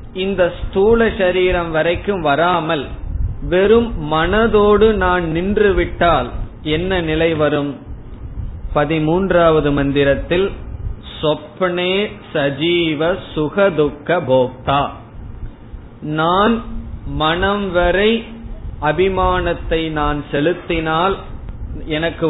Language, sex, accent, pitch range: Tamil, male, native, 150-185 Hz